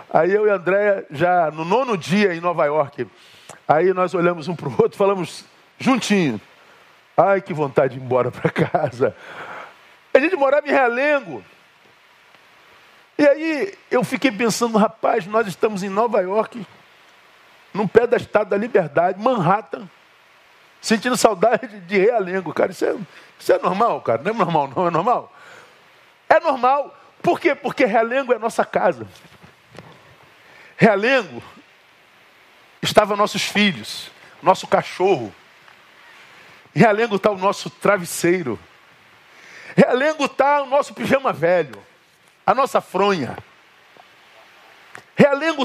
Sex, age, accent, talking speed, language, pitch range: male, 50-69, Brazilian, 135 wpm, Portuguese, 190-270 Hz